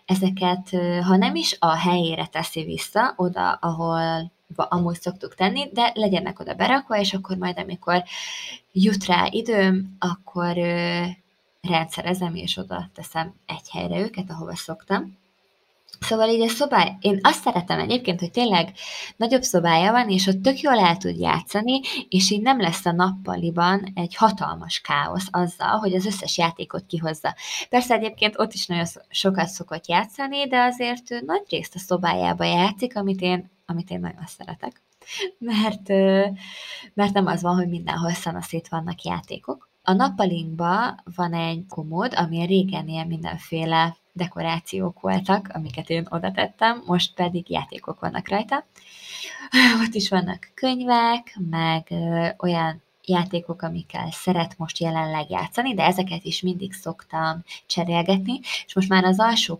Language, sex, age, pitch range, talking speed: Hungarian, female, 20-39, 170-210 Hz, 145 wpm